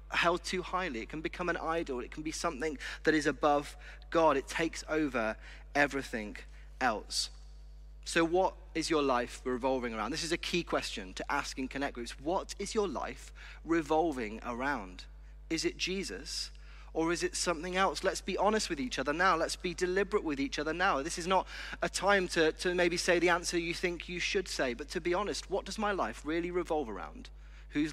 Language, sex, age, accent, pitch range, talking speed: English, male, 30-49, British, 130-170 Hz, 200 wpm